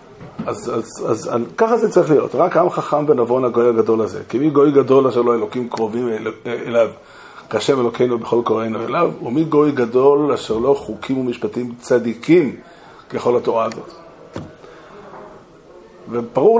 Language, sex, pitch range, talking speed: Hebrew, male, 120-160 Hz, 155 wpm